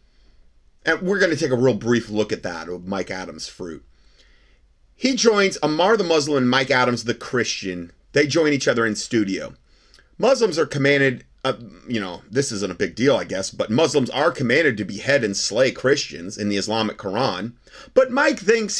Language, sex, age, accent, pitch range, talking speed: English, male, 30-49, American, 95-140 Hz, 190 wpm